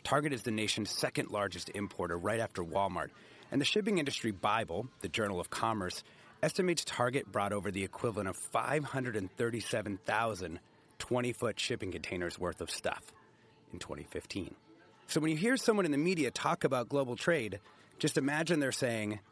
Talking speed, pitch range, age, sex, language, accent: 155 wpm, 95-140 Hz, 30-49, male, English, American